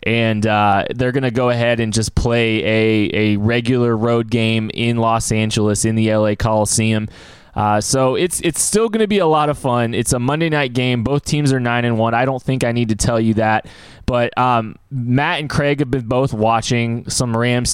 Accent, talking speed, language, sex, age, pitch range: American, 220 wpm, English, male, 20-39, 110-125 Hz